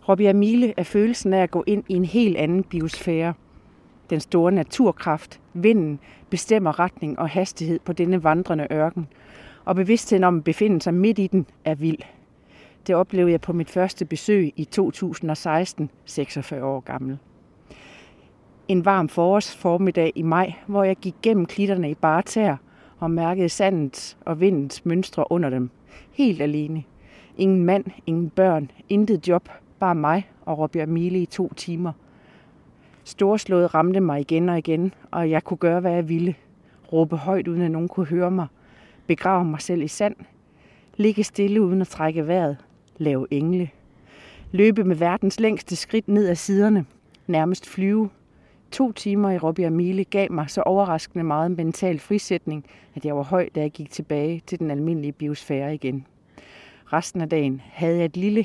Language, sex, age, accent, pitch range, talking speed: Danish, female, 40-59, native, 155-190 Hz, 165 wpm